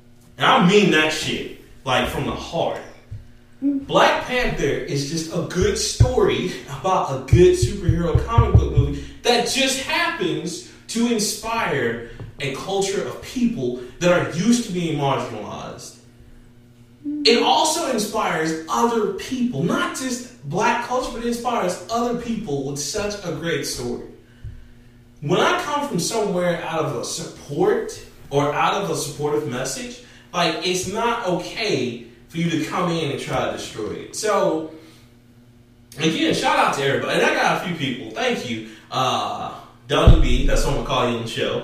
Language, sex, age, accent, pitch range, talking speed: English, male, 30-49, American, 125-200 Hz, 165 wpm